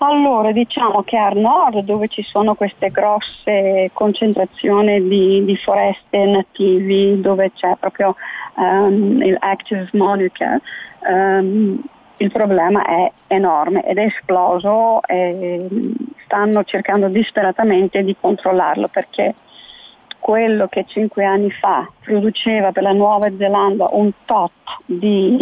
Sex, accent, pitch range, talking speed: female, native, 195-230 Hz, 120 wpm